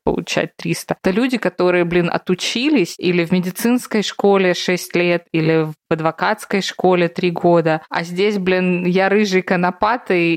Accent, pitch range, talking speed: native, 165-205 Hz, 150 wpm